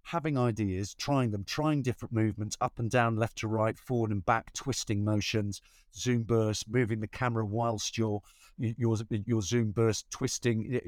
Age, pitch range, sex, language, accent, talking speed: 50-69, 100-130 Hz, male, English, British, 165 wpm